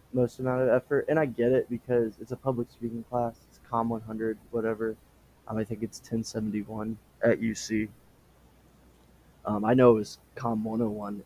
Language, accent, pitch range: English, American, 105-120 Hz